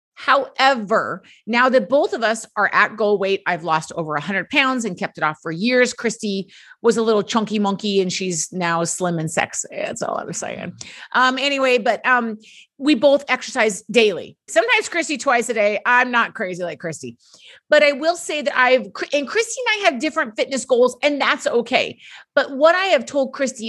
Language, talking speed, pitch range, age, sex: English, 205 wpm, 210-275 Hz, 30-49, female